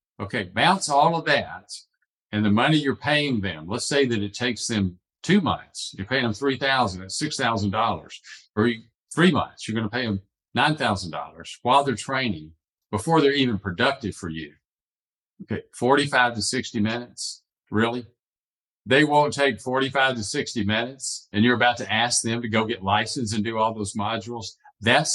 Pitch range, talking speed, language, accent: 100-130 Hz, 170 wpm, English, American